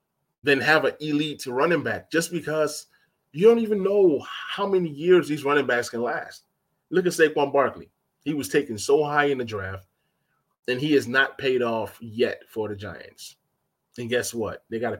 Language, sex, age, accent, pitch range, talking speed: English, male, 20-39, American, 115-165 Hz, 190 wpm